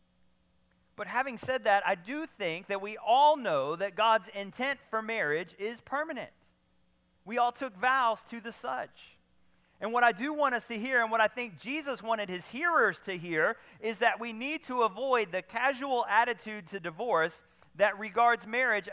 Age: 40-59